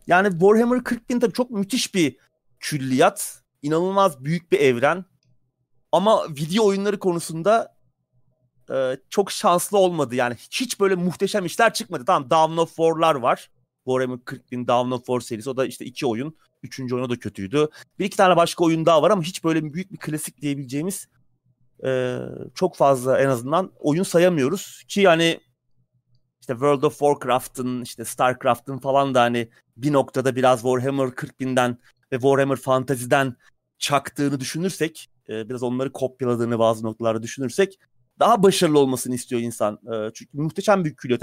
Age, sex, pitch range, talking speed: 30-49, male, 125-170 Hz, 150 wpm